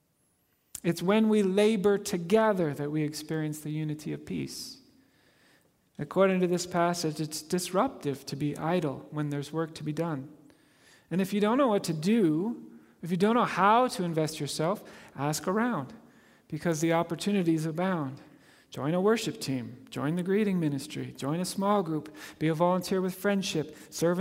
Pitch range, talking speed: 155-200 Hz, 165 wpm